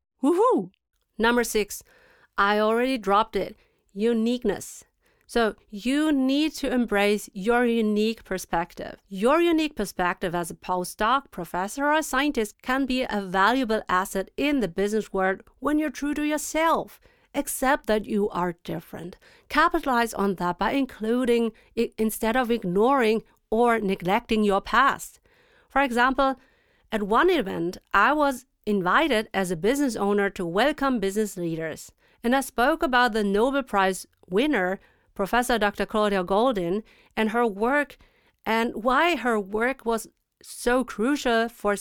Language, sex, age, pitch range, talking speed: English, female, 40-59, 200-270 Hz, 140 wpm